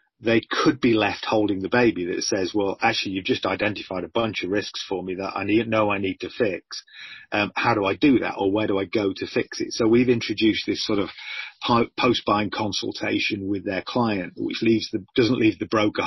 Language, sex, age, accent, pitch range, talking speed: English, male, 40-59, British, 100-115 Hz, 220 wpm